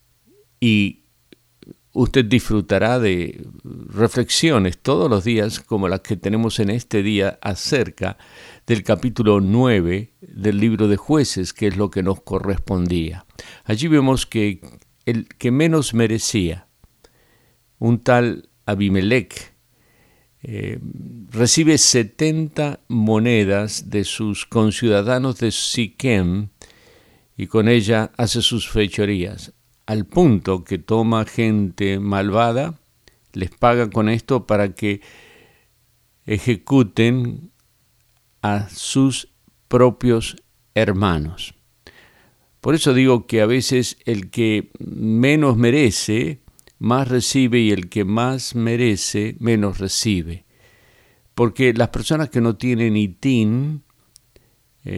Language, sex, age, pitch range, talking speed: Spanish, male, 50-69, 100-125 Hz, 105 wpm